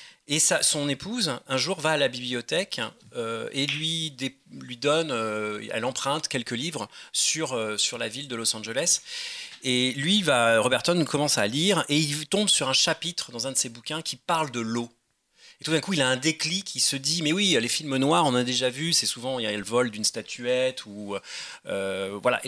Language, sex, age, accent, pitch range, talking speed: French, male, 30-49, French, 115-155 Hz, 225 wpm